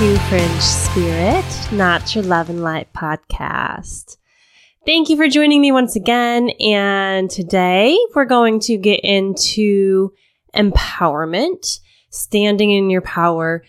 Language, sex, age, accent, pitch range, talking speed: English, female, 20-39, American, 180-230 Hz, 120 wpm